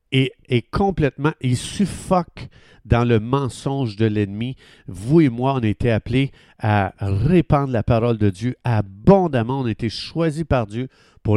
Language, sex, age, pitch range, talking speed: French, male, 50-69, 115-145 Hz, 165 wpm